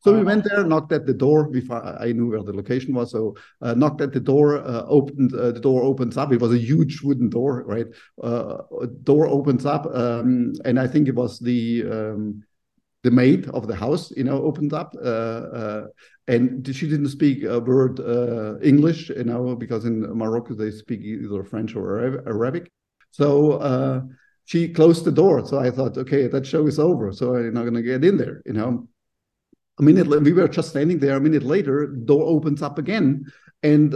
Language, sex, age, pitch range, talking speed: English, male, 50-69, 120-150 Hz, 210 wpm